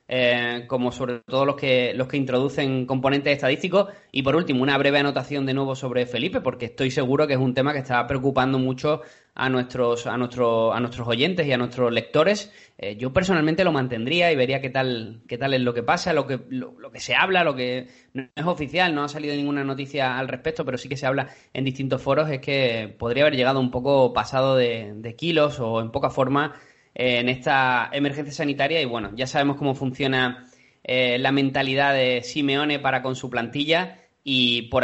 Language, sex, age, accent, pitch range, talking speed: Spanish, male, 20-39, Spanish, 125-140 Hz, 210 wpm